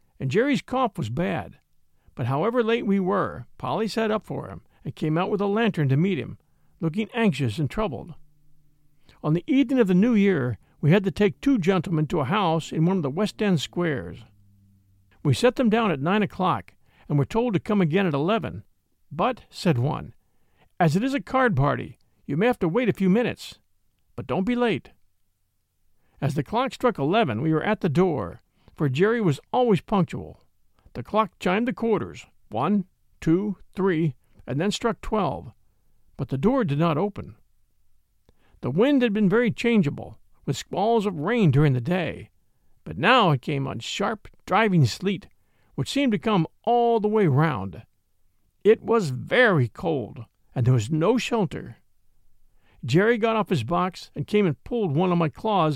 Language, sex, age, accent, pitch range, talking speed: English, male, 50-69, American, 125-210 Hz, 185 wpm